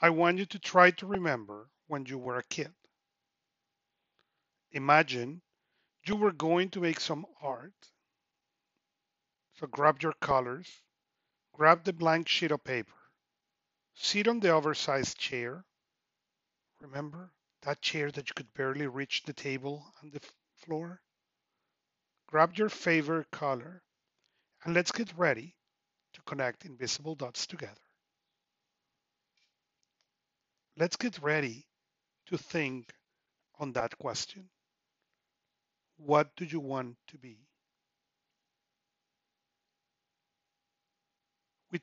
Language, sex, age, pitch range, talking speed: English, male, 40-59, 140-175 Hz, 110 wpm